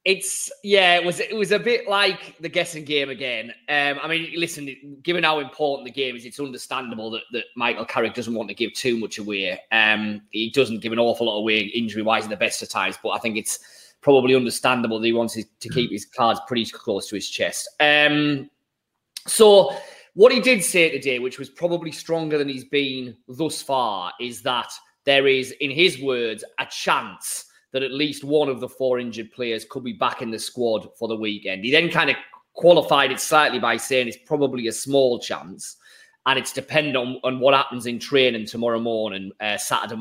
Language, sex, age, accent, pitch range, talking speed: English, male, 20-39, British, 115-155 Hz, 210 wpm